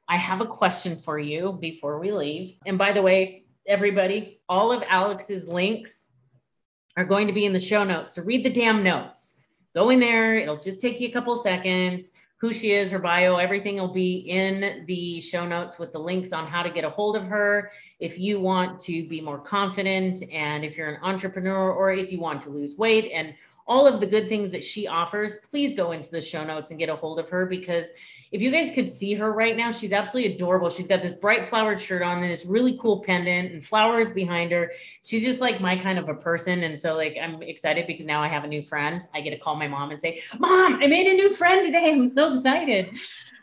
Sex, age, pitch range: female, 30-49, 170-220 Hz